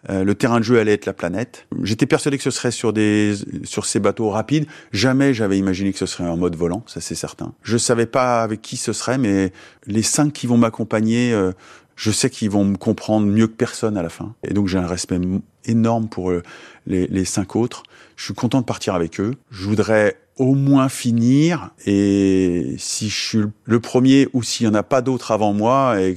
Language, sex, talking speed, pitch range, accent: French, male, 220 wpm, 100-120 Hz, French